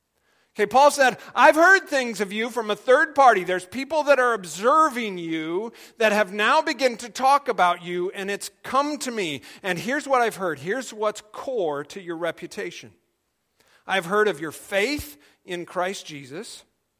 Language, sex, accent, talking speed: English, male, American, 175 wpm